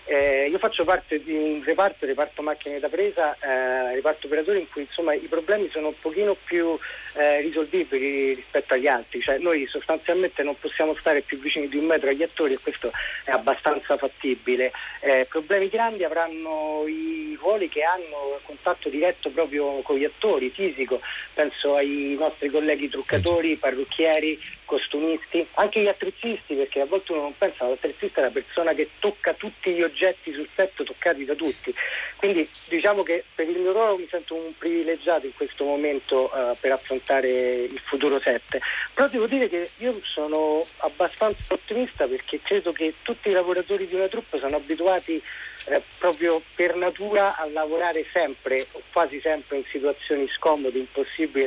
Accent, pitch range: native, 145-195 Hz